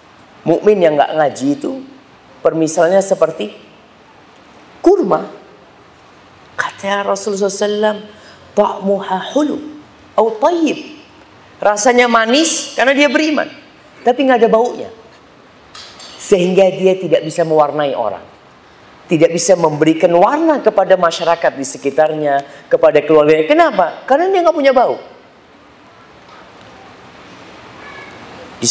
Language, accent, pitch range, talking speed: Indonesian, native, 175-260 Hz, 95 wpm